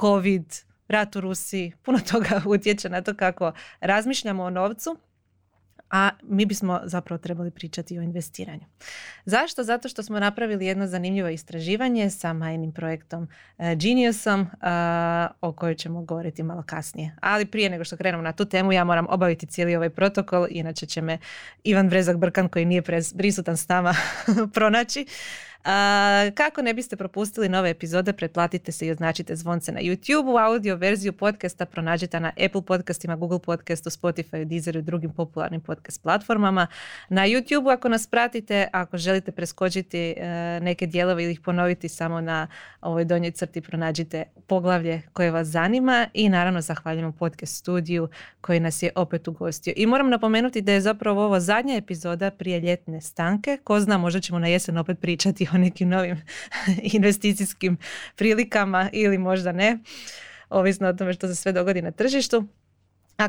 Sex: female